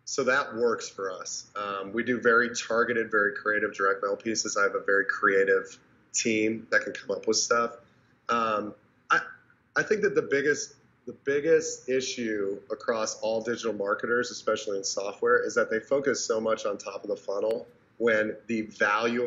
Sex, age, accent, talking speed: male, 30-49, American, 180 wpm